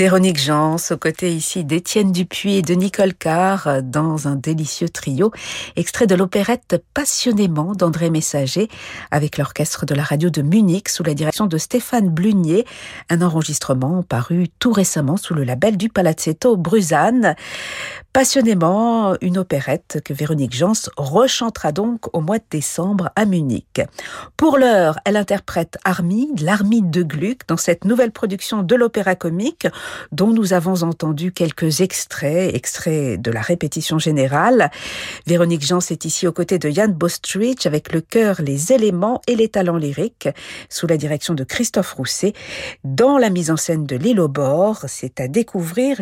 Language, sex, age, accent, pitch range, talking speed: French, female, 50-69, French, 155-210 Hz, 155 wpm